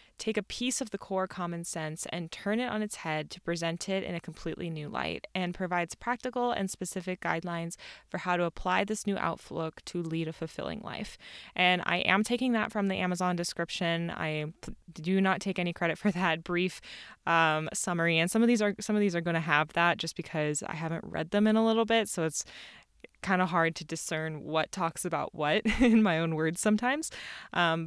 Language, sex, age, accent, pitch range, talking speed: English, female, 20-39, American, 165-205 Hz, 210 wpm